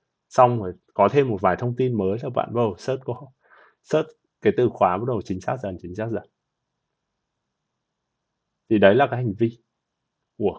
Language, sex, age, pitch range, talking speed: Vietnamese, male, 20-39, 100-130 Hz, 185 wpm